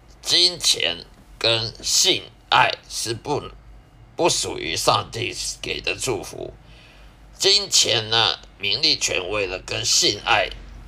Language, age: Chinese, 50-69